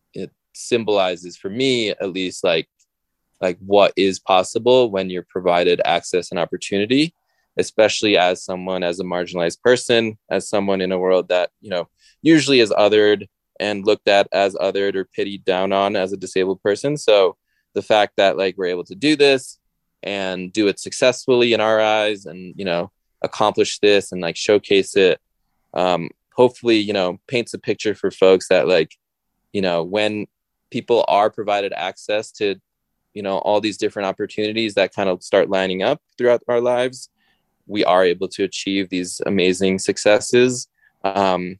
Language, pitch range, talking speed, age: English, 90-110 Hz, 165 wpm, 20-39